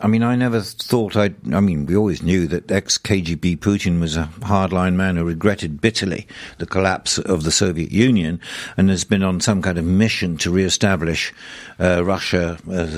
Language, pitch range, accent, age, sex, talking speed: English, 90-105 Hz, British, 60-79, male, 190 wpm